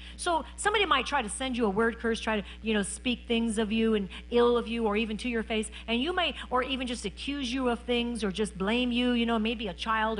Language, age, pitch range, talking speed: English, 50-69, 220-340 Hz, 270 wpm